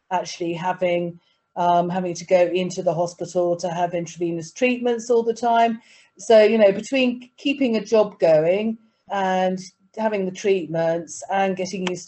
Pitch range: 175-205 Hz